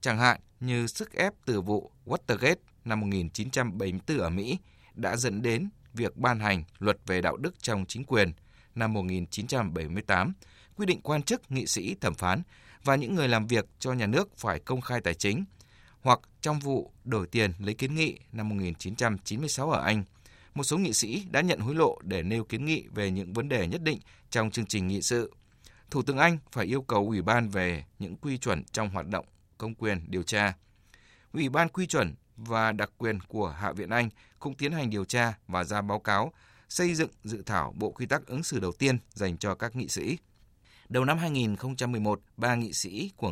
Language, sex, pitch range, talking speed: Vietnamese, male, 100-130 Hz, 200 wpm